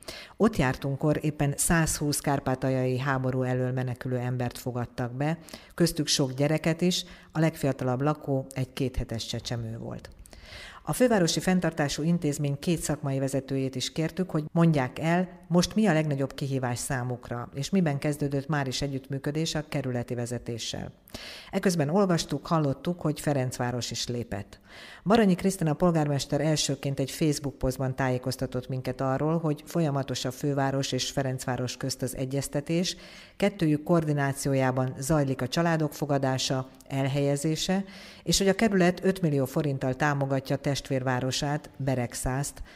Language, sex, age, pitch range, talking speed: Hungarian, female, 50-69, 130-160 Hz, 130 wpm